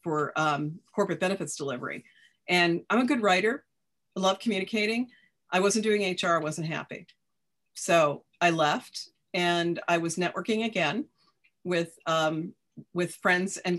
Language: English